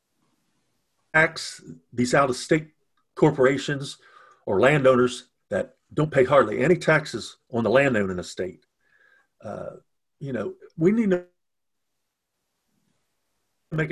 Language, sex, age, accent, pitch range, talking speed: English, male, 50-69, American, 115-150 Hz, 110 wpm